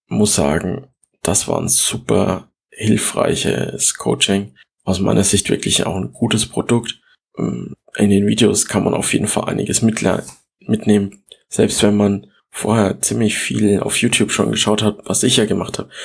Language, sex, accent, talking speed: German, male, German, 155 wpm